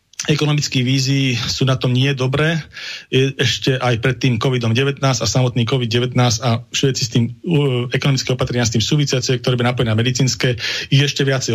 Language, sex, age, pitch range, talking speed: Slovak, male, 40-59, 115-135 Hz, 160 wpm